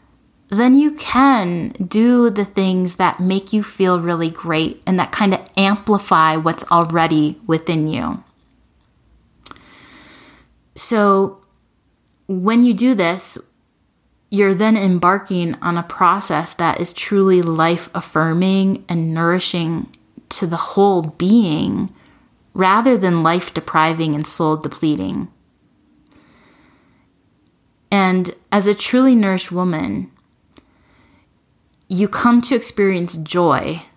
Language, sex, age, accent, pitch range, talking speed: English, female, 20-39, American, 165-195 Hz, 100 wpm